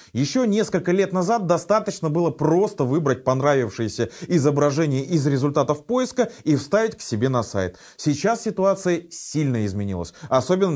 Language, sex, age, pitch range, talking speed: Russian, male, 20-39, 130-185 Hz, 135 wpm